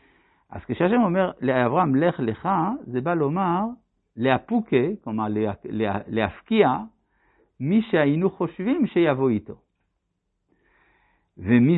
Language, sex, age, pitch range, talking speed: Hebrew, male, 60-79, 115-190 Hz, 90 wpm